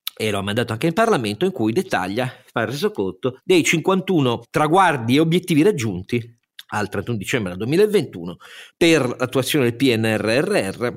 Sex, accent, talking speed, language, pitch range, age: male, native, 150 wpm, Italian, 105-135 Hz, 40-59